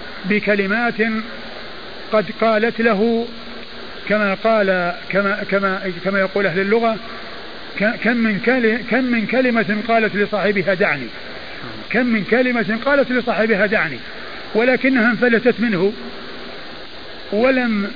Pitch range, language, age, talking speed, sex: 195-235 Hz, Arabic, 50-69, 100 wpm, male